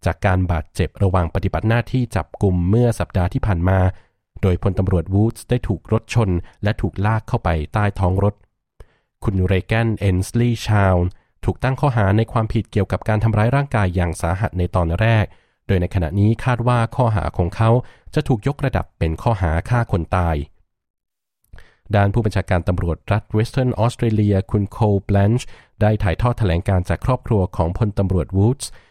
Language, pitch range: Thai, 90-115 Hz